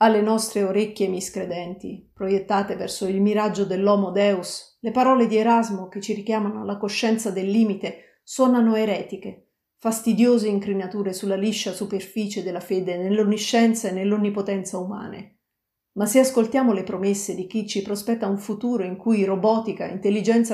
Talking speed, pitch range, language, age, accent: 145 wpm, 200-225 Hz, Italian, 40-59, native